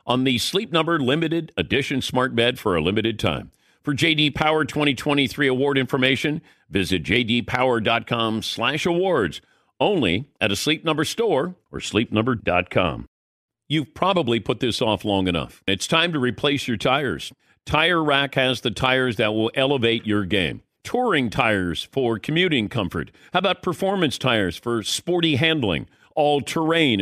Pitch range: 115-150 Hz